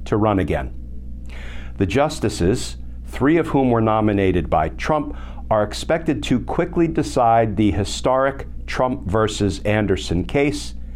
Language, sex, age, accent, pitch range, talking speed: English, male, 50-69, American, 85-130 Hz, 125 wpm